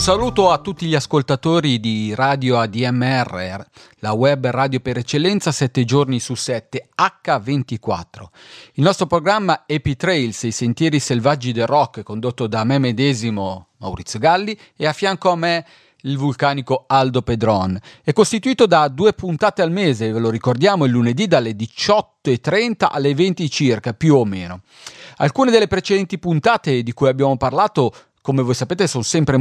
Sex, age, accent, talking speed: male, 40-59, native, 155 wpm